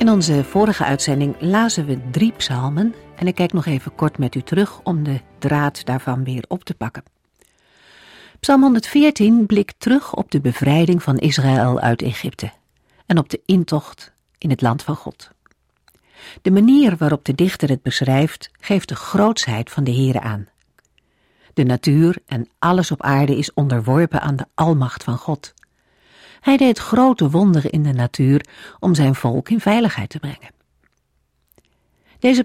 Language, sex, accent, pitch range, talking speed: Dutch, female, Dutch, 130-185 Hz, 160 wpm